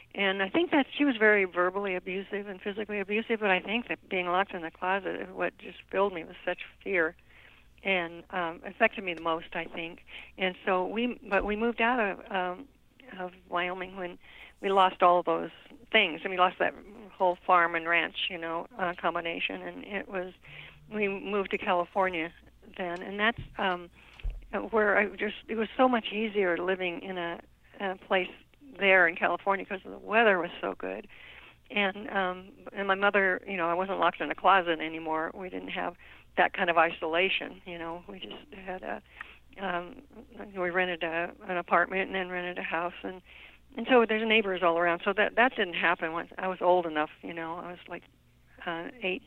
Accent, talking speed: American, 195 wpm